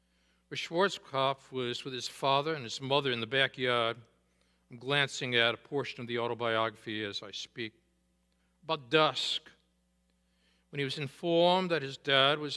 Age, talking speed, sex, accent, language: 60-79, 160 wpm, male, American, English